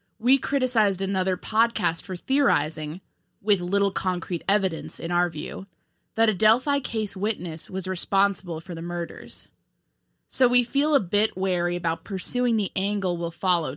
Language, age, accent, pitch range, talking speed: English, 20-39, American, 175-220 Hz, 155 wpm